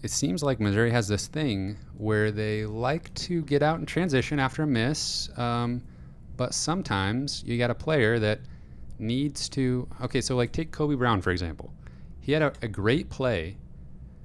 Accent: American